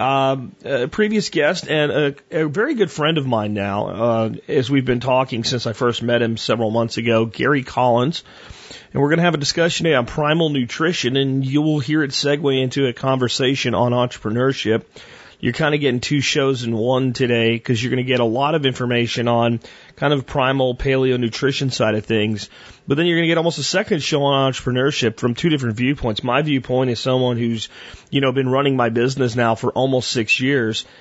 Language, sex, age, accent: English, male, 30-49, American